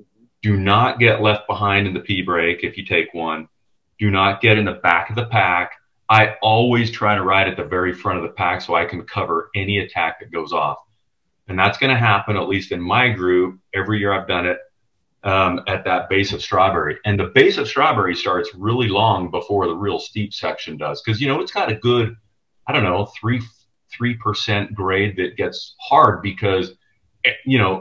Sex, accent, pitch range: male, American, 95-115 Hz